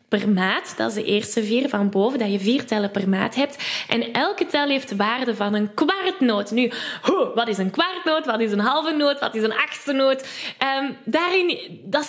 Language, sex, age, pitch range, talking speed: Dutch, female, 10-29, 225-300 Hz, 220 wpm